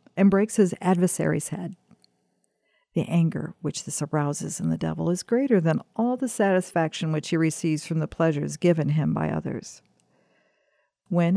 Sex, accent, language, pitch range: female, American, English, 150-190 Hz